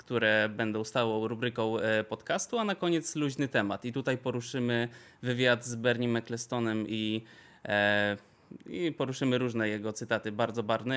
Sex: male